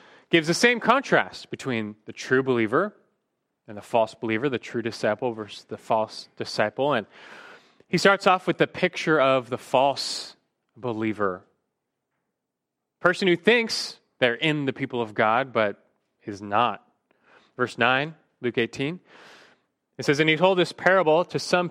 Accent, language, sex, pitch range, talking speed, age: American, English, male, 120-180 Hz, 150 wpm, 30-49